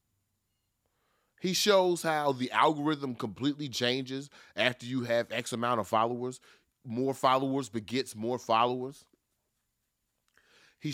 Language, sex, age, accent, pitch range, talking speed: English, male, 30-49, American, 110-140 Hz, 110 wpm